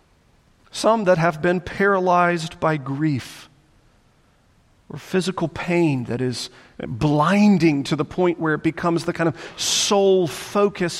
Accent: American